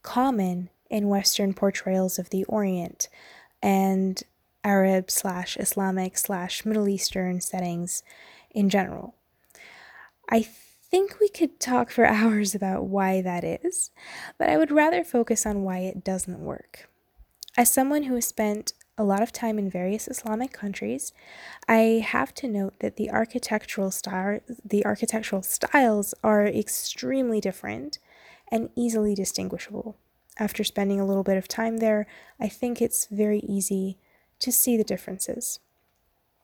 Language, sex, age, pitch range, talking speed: English, female, 10-29, 190-235 Hz, 140 wpm